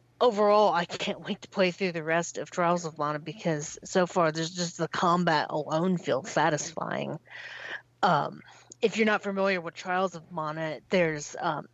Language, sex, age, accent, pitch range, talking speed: English, female, 40-59, American, 160-195 Hz, 175 wpm